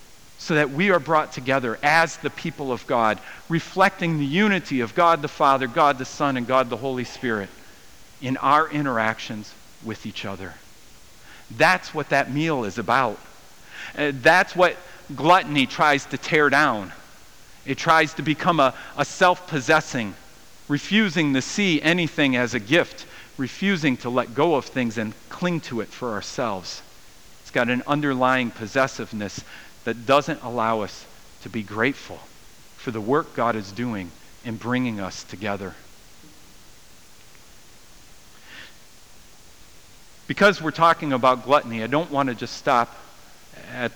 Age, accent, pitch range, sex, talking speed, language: 50-69, American, 115-155 Hz, male, 145 wpm, English